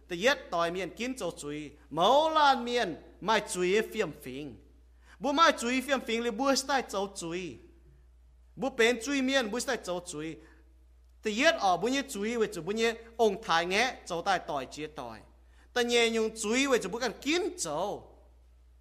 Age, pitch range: 30-49, 165-260 Hz